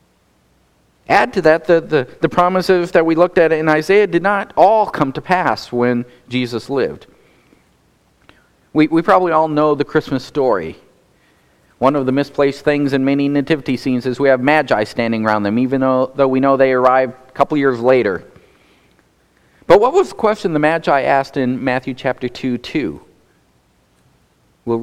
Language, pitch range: English, 130-170 Hz